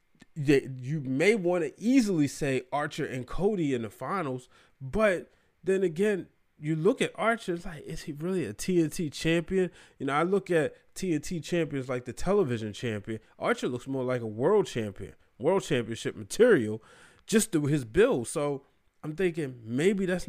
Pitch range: 120-175 Hz